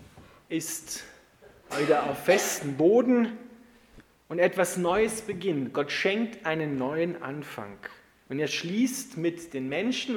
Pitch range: 135-195 Hz